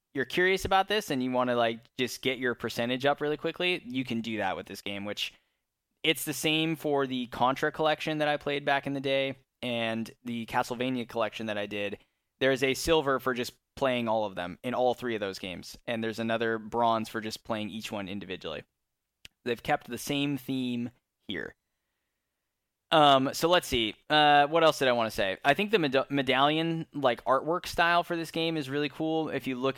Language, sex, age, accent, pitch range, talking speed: English, male, 10-29, American, 115-145 Hz, 215 wpm